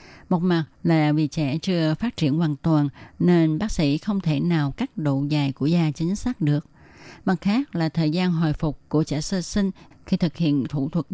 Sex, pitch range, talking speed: female, 150-185 Hz, 215 wpm